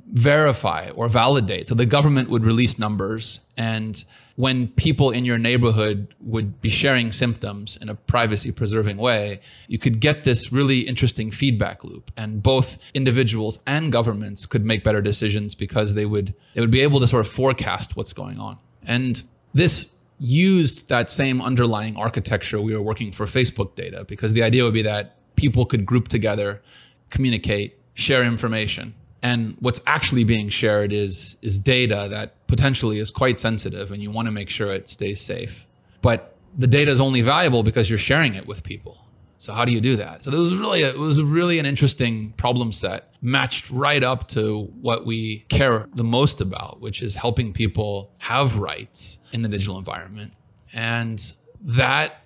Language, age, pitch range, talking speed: English, 30-49, 105-130 Hz, 180 wpm